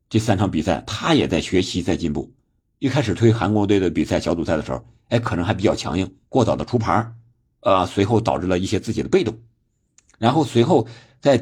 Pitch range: 90-115 Hz